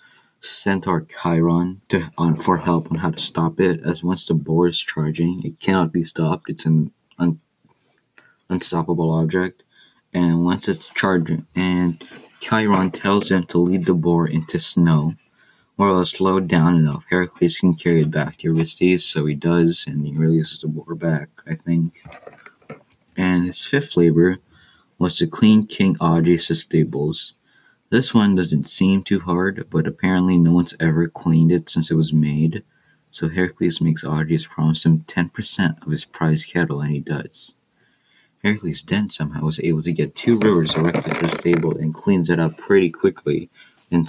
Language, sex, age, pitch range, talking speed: English, male, 20-39, 80-90 Hz, 170 wpm